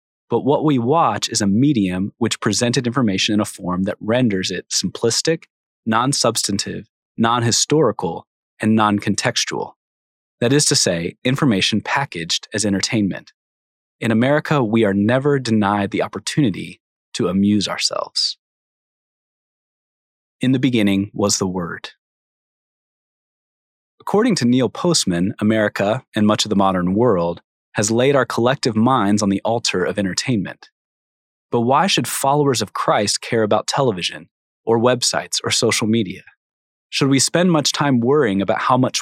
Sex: male